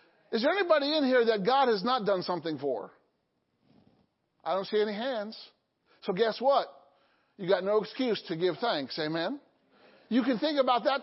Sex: male